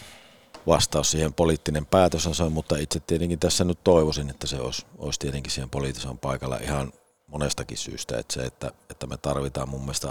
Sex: male